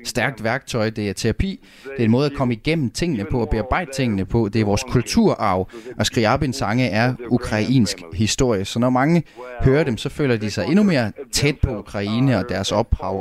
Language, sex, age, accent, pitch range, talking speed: Danish, male, 30-49, native, 105-130 Hz, 215 wpm